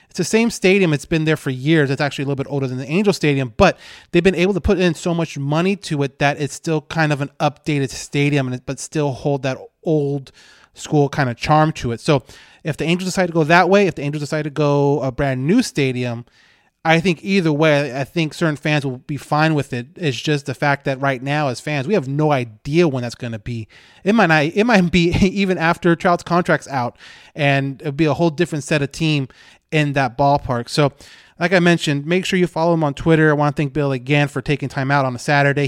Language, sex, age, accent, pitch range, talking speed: English, male, 30-49, American, 140-165 Hz, 245 wpm